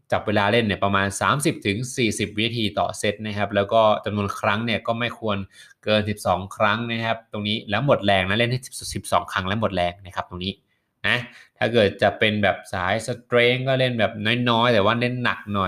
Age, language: 20-39, Thai